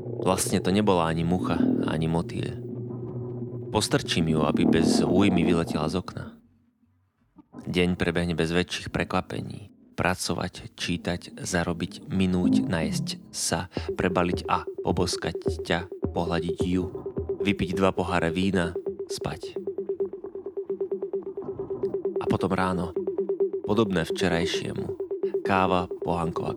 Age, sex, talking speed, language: 30-49, male, 100 wpm, Slovak